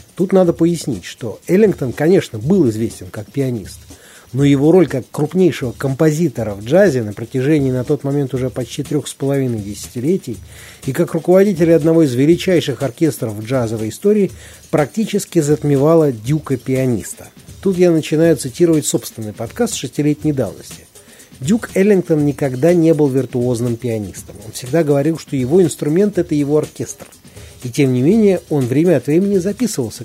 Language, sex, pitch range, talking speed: Russian, male, 120-165 Hz, 150 wpm